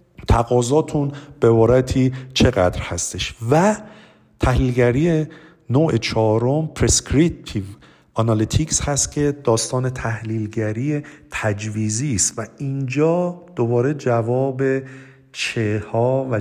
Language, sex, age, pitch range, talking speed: Persian, male, 50-69, 110-140 Hz, 90 wpm